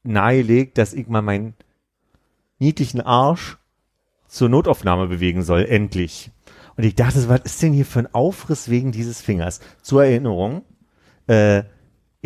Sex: male